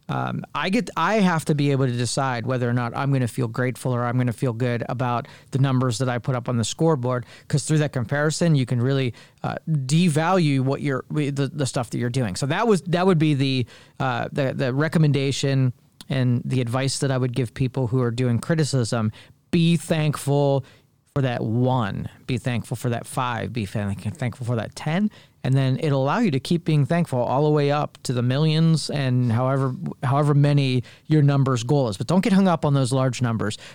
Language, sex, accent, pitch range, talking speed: English, male, American, 125-150 Hz, 215 wpm